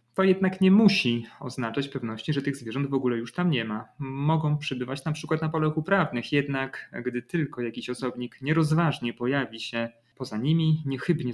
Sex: male